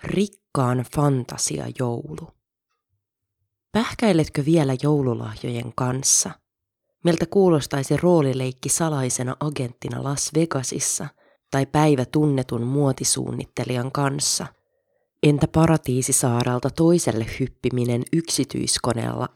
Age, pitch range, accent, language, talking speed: 30-49, 125-155 Hz, native, Finnish, 75 wpm